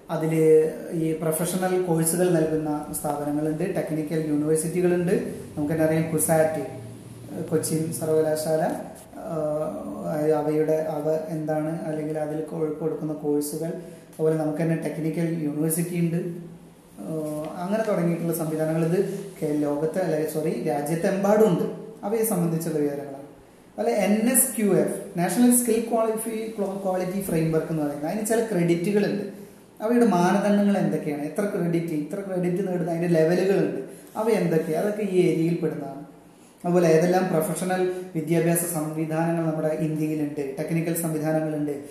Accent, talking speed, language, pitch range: native, 105 wpm, Malayalam, 155-180 Hz